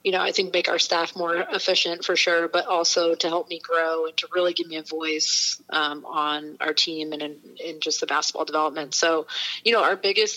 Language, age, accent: English, 30-49, American